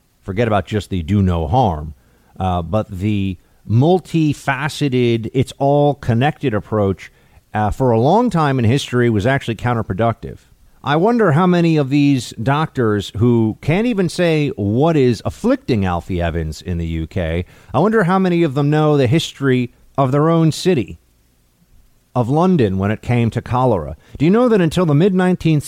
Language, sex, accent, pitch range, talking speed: English, male, American, 110-155 Hz, 170 wpm